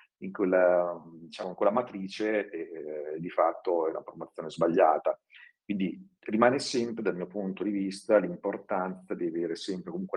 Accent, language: native, Italian